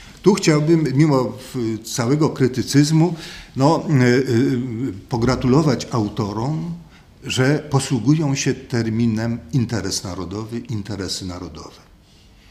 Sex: male